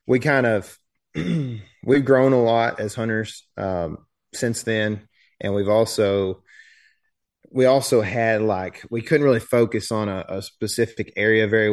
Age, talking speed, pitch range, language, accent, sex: 30-49, 150 wpm, 100-120 Hz, English, American, male